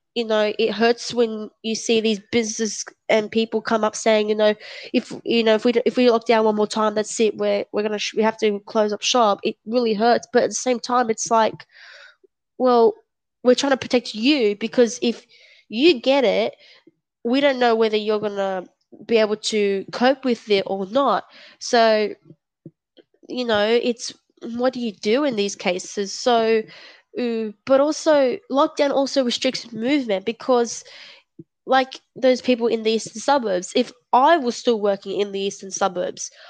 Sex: female